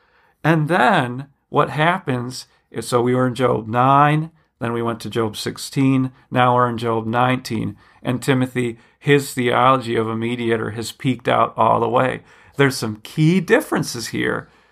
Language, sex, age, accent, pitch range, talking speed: English, male, 40-59, American, 115-155 Hz, 165 wpm